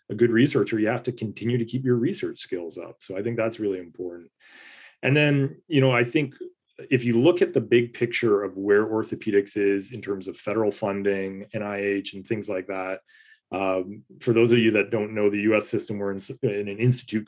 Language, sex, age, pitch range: English, male, 30-49, 100-120 Hz